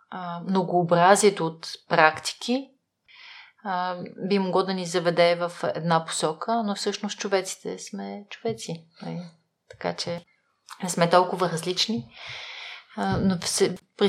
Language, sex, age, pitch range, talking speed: Bulgarian, female, 30-49, 175-215 Hz, 100 wpm